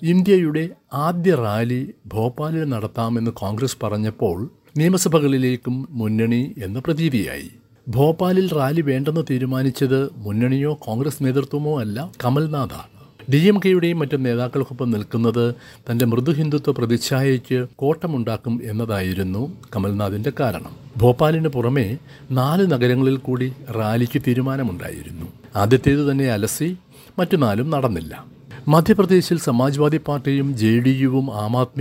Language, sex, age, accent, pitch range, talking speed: Malayalam, male, 60-79, native, 115-145 Hz, 100 wpm